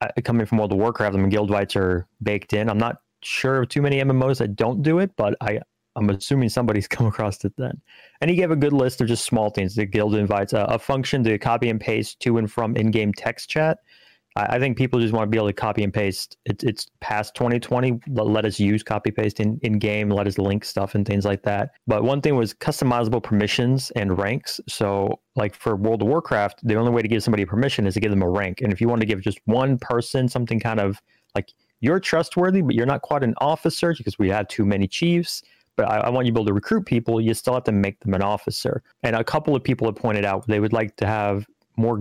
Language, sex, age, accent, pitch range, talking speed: English, male, 30-49, American, 105-125 Hz, 250 wpm